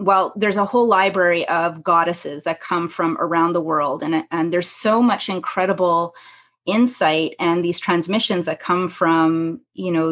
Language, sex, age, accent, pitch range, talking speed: English, female, 30-49, American, 170-190 Hz, 165 wpm